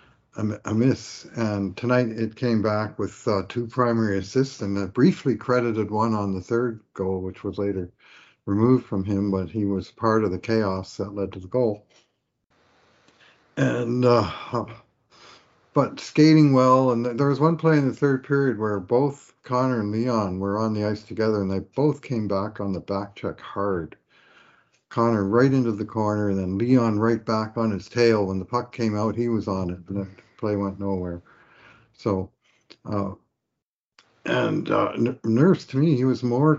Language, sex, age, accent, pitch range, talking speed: English, male, 50-69, American, 100-125 Hz, 180 wpm